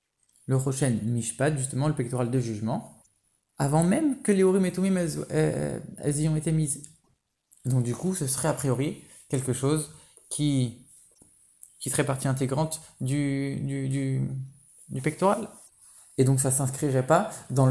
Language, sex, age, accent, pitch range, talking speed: French, male, 20-39, French, 130-160 Hz, 165 wpm